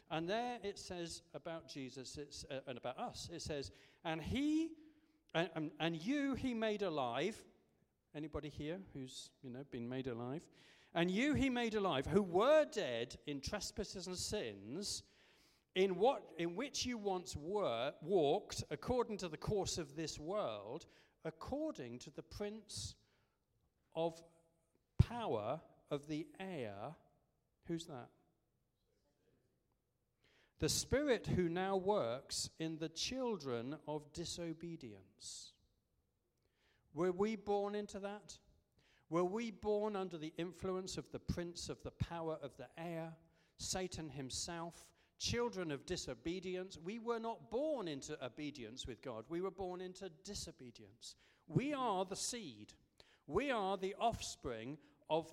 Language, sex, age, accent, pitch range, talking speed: English, male, 40-59, British, 140-200 Hz, 135 wpm